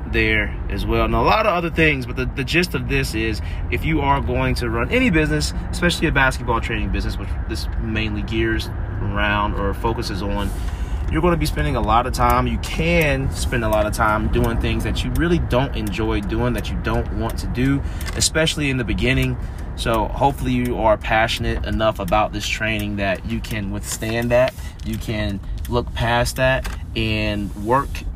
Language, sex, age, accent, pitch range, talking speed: English, male, 30-49, American, 95-115 Hz, 195 wpm